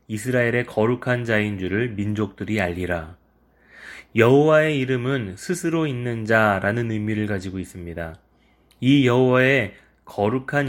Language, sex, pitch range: Korean, male, 100-130 Hz